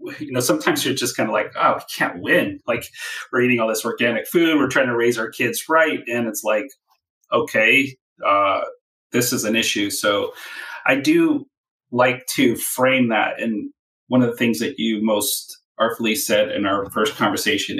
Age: 30-49